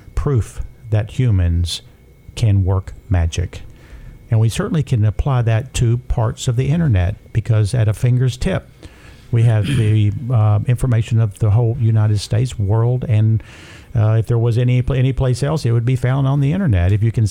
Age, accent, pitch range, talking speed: 50-69, American, 105-125 Hz, 180 wpm